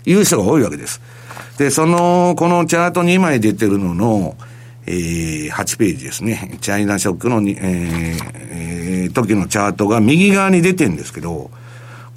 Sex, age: male, 60-79